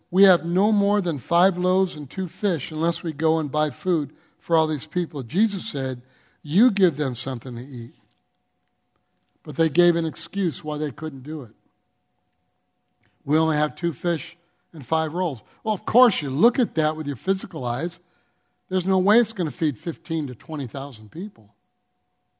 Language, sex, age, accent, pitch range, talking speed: English, male, 60-79, American, 140-180 Hz, 180 wpm